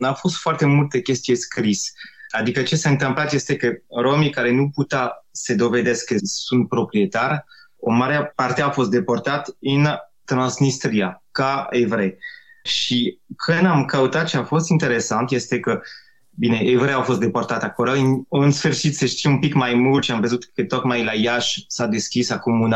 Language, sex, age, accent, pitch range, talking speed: Romanian, male, 20-39, native, 120-155 Hz, 175 wpm